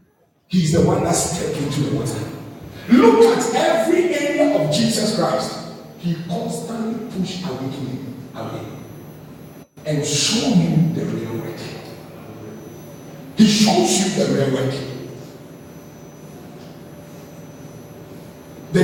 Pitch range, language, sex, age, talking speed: 145-185 Hz, English, male, 50-69, 100 wpm